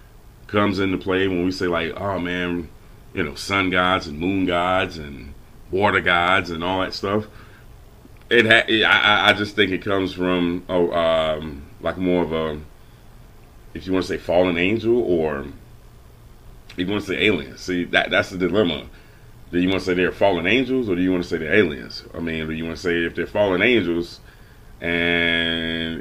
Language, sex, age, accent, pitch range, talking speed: English, male, 30-49, American, 85-100 Hz, 195 wpm